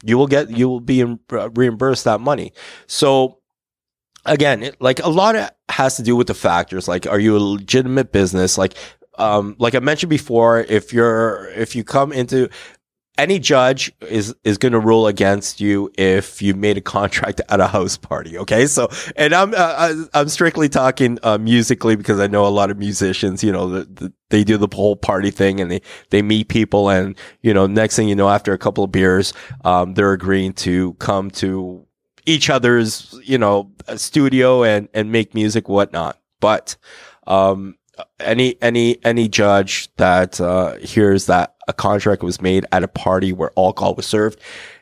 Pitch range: 100-125 Hz